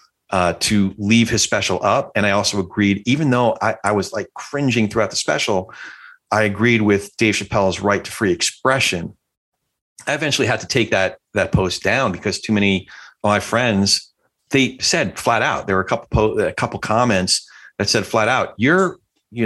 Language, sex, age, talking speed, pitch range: English, male, 40-59, 190 wpm, 100-130 Hz